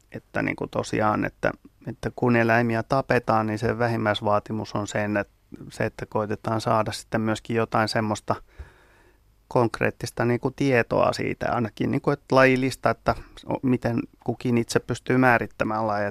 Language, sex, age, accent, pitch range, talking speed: Finnish, male, 30-49, native, 110-130 Hz, 140 wpm